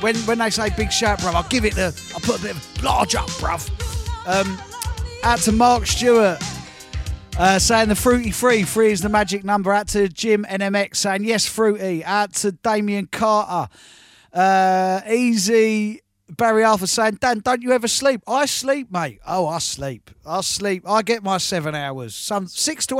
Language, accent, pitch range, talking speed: English, British, 165-215 Hz, 185 wpm